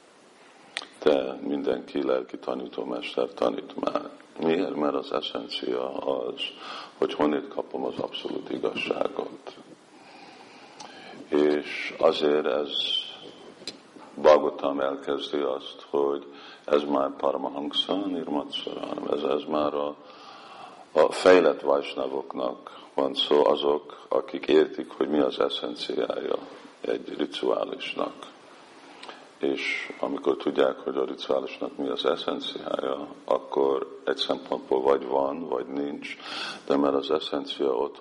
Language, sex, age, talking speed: Hungarian, male, 50-69, 105 wpm